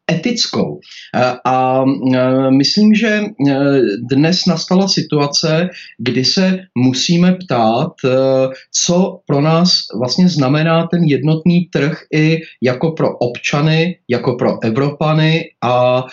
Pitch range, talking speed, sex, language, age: 130-160 Hz, 95 wpm, male, Slovak, 30-49